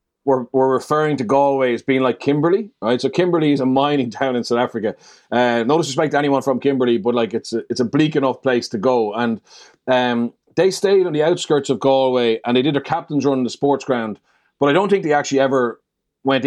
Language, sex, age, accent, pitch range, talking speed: English, male, 30-49, Irish, 120-145 Hz, 235 wpm